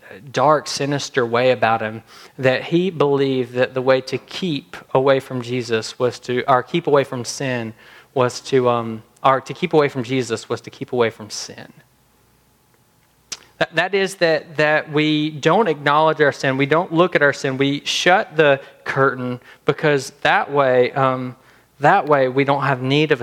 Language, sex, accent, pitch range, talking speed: English, male, American, 125-155 Hz, 180 wpm